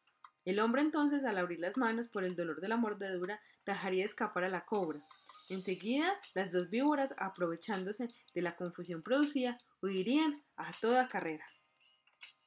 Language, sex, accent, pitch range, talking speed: Spanish, female, Colombian, 180-245 Hz, 150 wpm